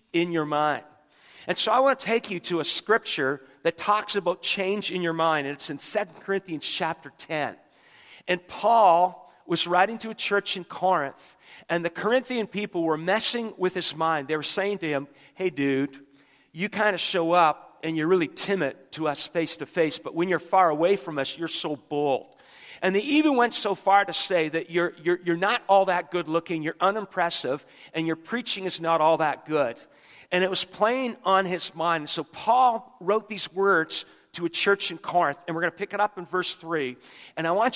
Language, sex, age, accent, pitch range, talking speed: English, male, 40-59, American, 165-200 Hz, 210 wpm